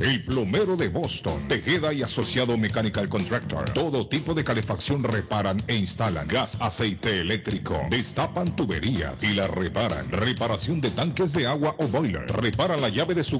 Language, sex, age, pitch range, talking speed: Spanish, male, 50-69, 110-155 Hz, 160 wpm